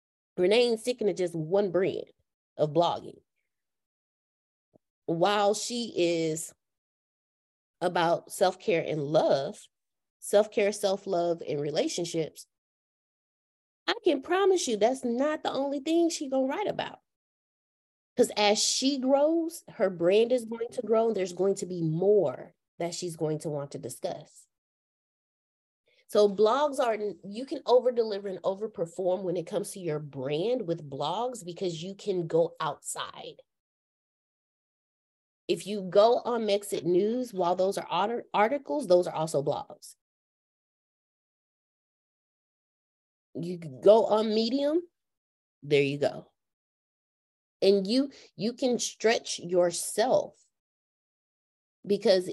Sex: female